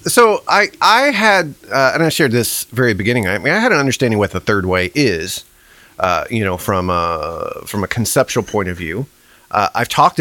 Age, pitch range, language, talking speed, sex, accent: 40-59, 105-140 Hz, English, 215 wpm, male, American